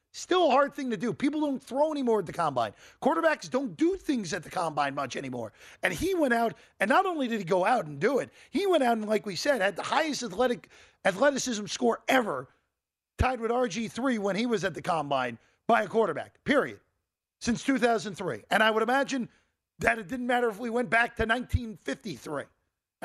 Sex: male